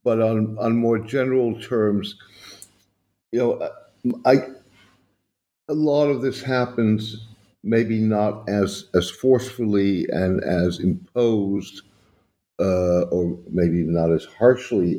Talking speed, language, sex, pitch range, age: 110 wpm, English, male, 85-105 Hz, 60-79